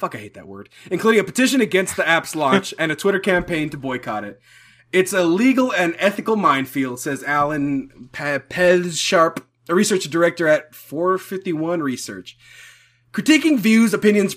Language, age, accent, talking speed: English, 30-49, American, 155 wpm